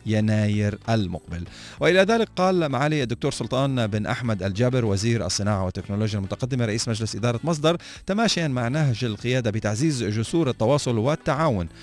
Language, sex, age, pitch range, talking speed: Arabic, male, 40-59, 105-135 Hz, 135 wpm